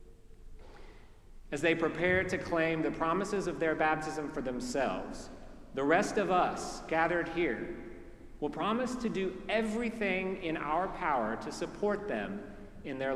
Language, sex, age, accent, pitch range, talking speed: English, male, 40-59, American, 135-180 Hz, 140 wpm